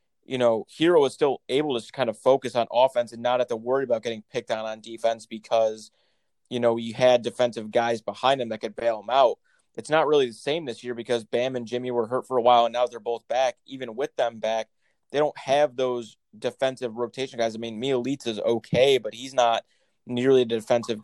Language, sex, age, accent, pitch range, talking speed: English, male, 20-39, American, 115-130 Hz, 230 wpm